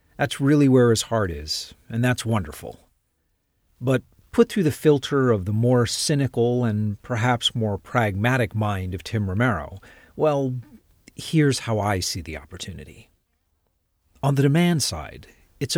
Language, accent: English, American